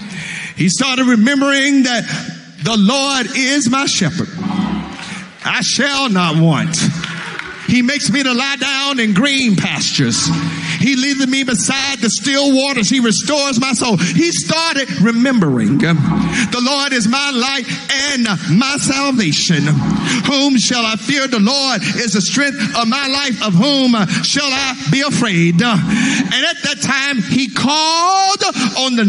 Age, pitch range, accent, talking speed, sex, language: 50-69, 200-275 Hz, American, 145 wpm, male, English